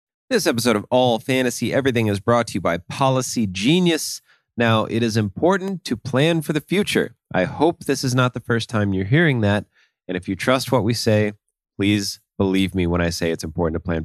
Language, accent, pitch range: English, American, 95-135 Hz